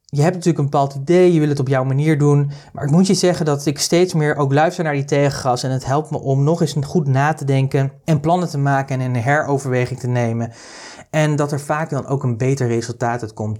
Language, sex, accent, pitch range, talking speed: Dutch, male, Dutch, 130-160 Hz, 255 wpm